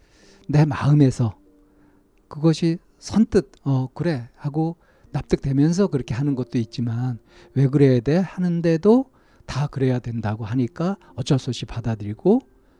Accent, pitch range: native, 115-150 Hz